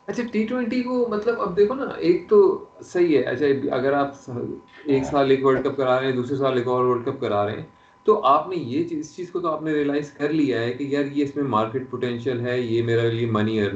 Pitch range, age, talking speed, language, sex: 125-190 Hz, 30-49, 190 wpm, Urdu, male